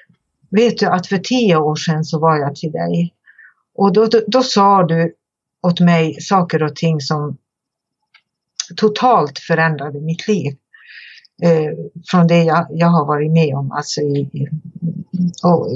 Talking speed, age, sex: 150 wpm, 60-79, female